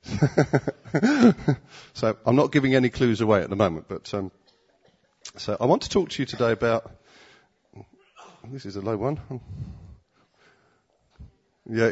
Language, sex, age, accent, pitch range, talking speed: English, male, 40-59, British, 105-130 Hz, 135 wpm